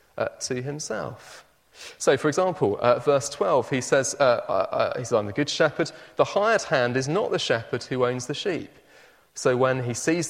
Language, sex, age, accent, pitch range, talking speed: English, male, 30-49, British, 115-145 Hz, 190 wpm